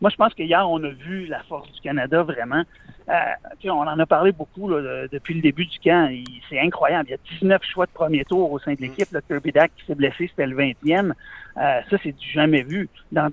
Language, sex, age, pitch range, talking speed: French, male, 60-79, 145-185 Hz, 255 wpm